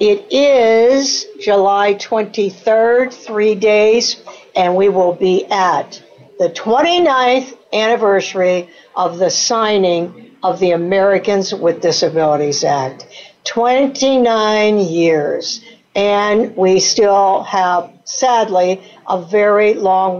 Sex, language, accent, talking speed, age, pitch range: female, English, American, 100 wpm, 60-79, 190-255 Hz